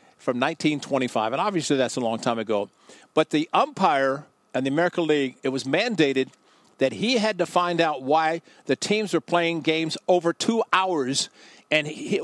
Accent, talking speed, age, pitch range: American, 175 wpm, 50-69, 145-200 Hz